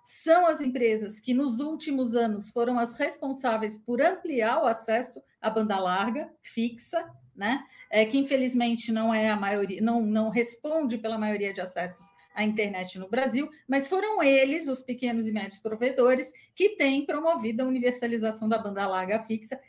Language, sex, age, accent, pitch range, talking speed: Portuguese, female, 40-59, Brazilian, 220-265 Hz, 150 wpm